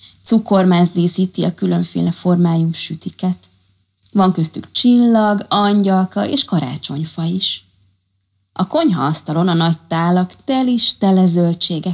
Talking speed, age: 105 wpm, 20-39